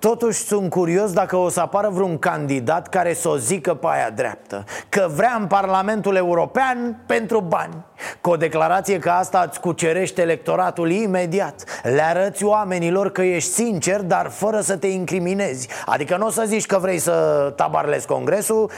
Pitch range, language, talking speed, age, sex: 165-205 Hz, Romanian, 170 wpm, 30-49, male